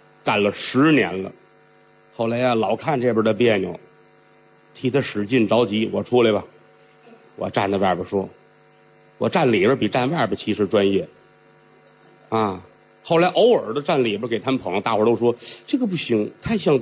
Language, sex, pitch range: Chinese, male, 105-170 Hz